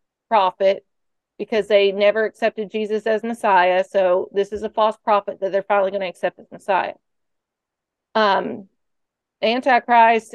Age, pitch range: 40-59, 195-225 Hz